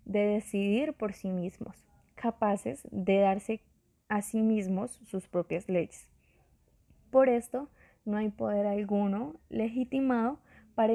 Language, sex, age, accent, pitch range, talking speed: Spanish, female, 20-39, Colombian, 185-225 Hz, 120 wpm